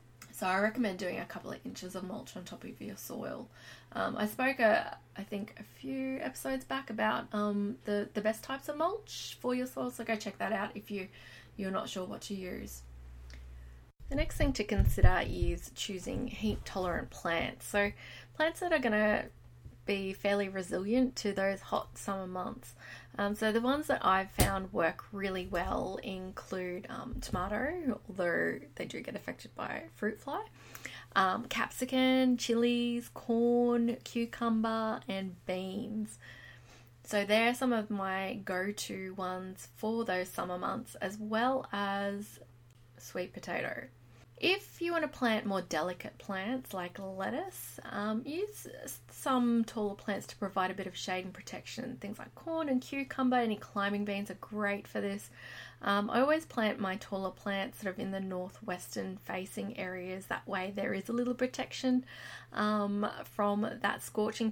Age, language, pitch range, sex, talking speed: 20-39, English, 185-230 Hz, female, 160 wpm